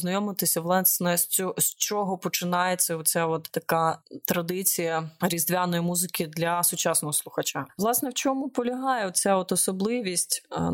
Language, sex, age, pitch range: Ukrainian, female, 20-39, 175-220 Hz